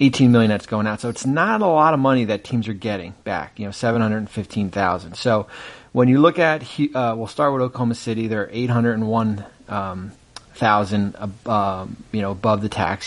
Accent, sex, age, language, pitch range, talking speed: American, male, 30-49, English, 105-120 Hz, 180 wpm